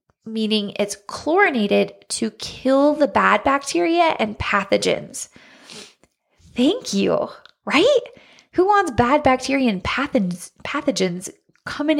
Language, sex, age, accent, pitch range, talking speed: English, female, 20-39, American, 195-270 Hz, 100 wpm